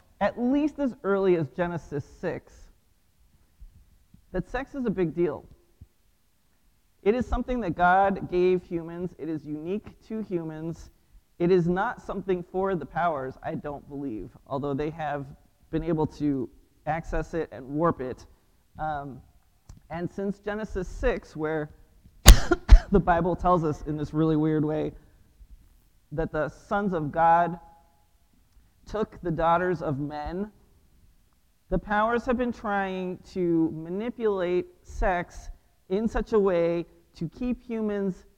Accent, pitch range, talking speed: American, 150-195 Hz, 135 wpm